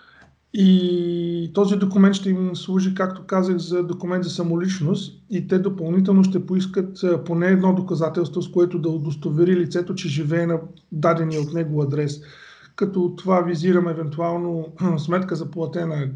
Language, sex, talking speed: Bulgarian, male, 145 wpm